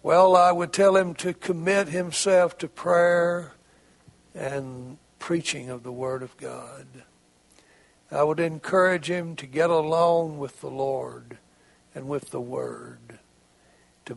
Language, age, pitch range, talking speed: English, 60-79, 135-180 Hz, 135 wpm